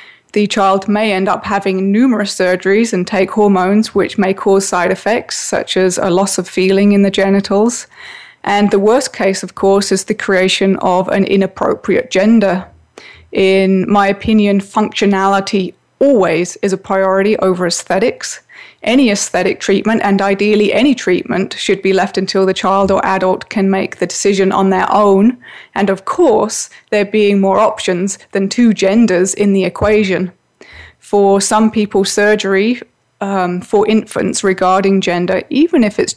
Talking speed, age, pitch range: 160 wpm, 20-39, 190-215 Hz